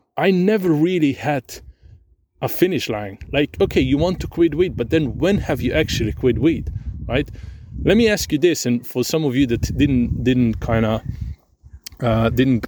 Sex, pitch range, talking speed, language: male, 115-150 Hz, 185 wpm, English